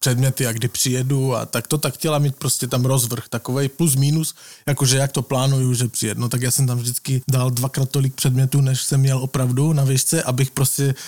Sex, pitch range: male, 125-145 Hz